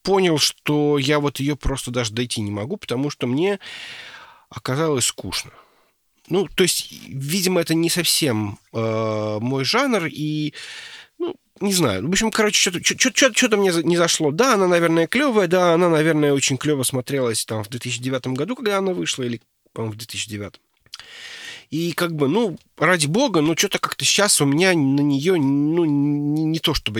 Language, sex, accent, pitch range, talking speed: Russian, male, native, 125-180 Hz, 175 wpm